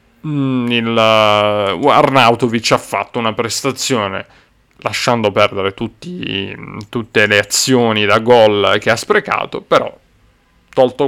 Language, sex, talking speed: Italian, male, 105 wpm